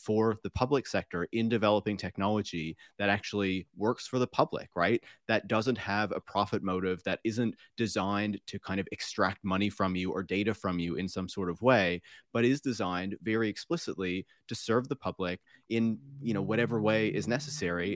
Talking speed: 185 wpm